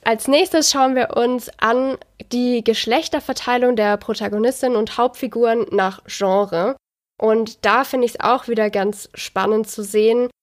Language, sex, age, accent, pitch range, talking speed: German, female, 20-39, German, 215-255 Hz, 145 wpm